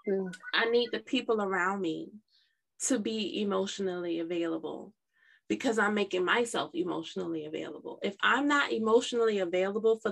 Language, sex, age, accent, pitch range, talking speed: English, female, 20-39, American, 185-235 Hz, 130 wpm